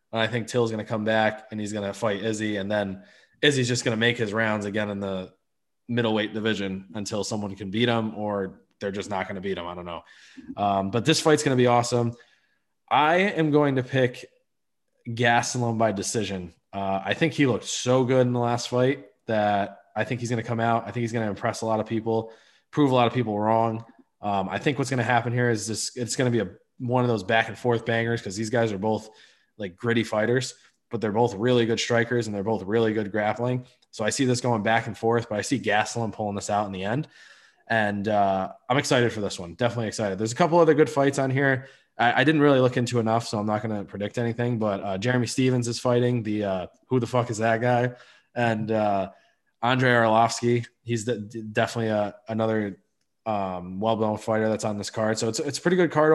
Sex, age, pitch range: male, 20-39, 105-125 Hz